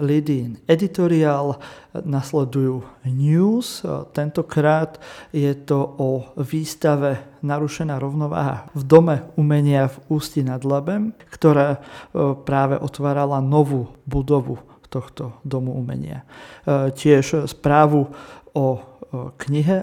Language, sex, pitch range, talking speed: Slovak, male, 135-160 Hz, 90 wpm